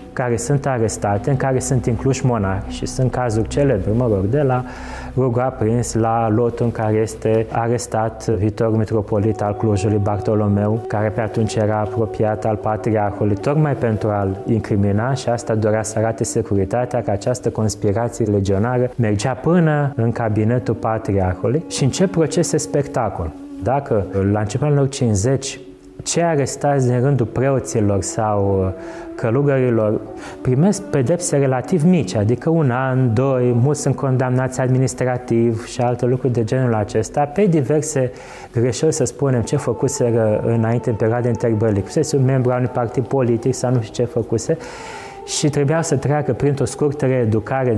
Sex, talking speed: male, 145 wpm